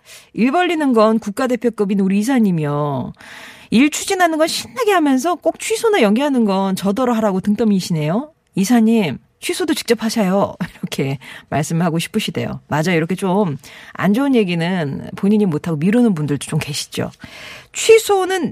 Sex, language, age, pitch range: female, Korean, 40-59, 185-300 Hz